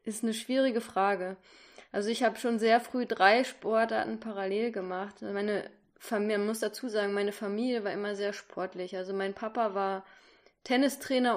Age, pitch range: 20-39, 190-225 Hz